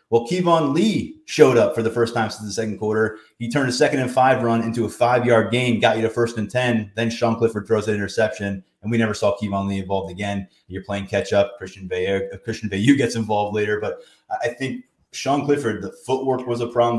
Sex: male